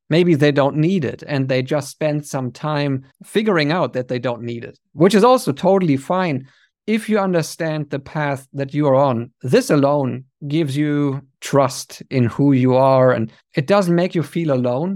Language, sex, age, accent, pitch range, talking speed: English, male, 50-69, German, 130-165 Hz, 195 wpm